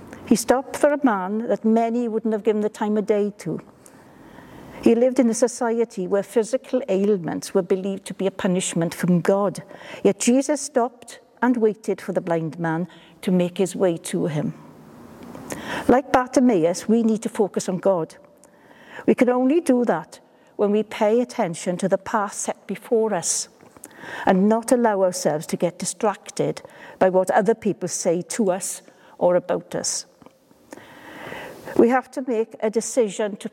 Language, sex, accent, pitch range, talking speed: English, female, British, 190-245 Hz, 165 wpm